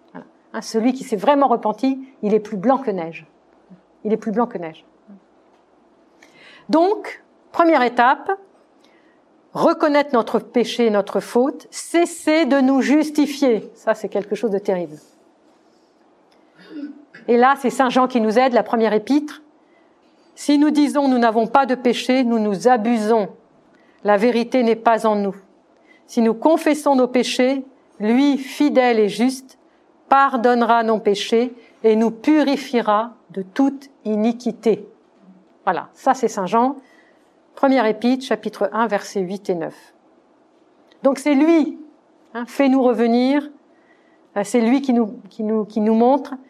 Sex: female